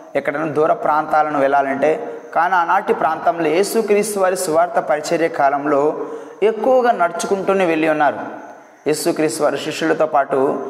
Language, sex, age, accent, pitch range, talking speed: Telugu, male, 20-39, native, 155-210 Hz, 110 wpm